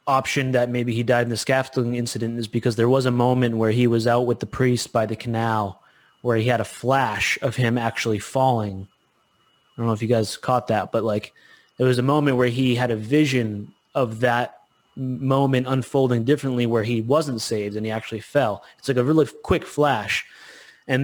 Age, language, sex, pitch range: 20-39, English, male, 115-135 Hz